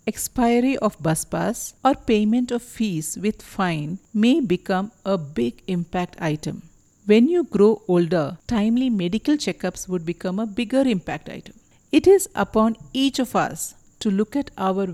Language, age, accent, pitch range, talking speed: English, 50-69, Indian, 185-240 Hz, 155 wpm